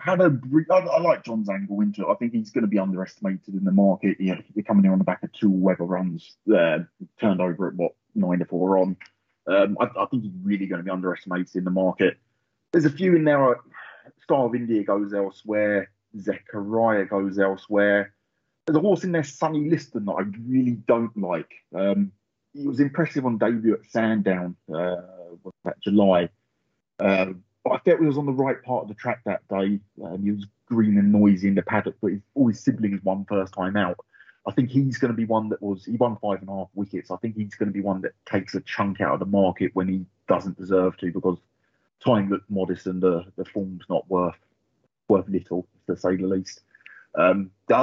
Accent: British